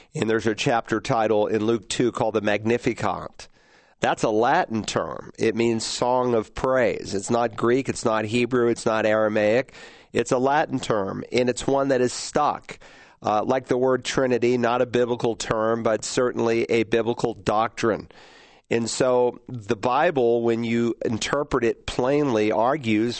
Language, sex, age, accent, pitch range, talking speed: English, male, 50-69, American, 110-125 Hz, 165 wpm